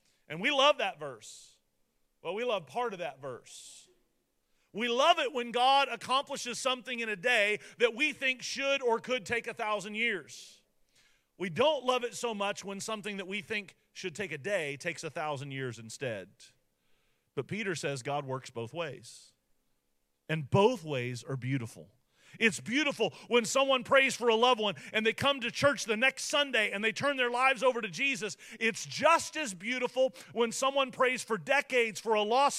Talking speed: 190 wpm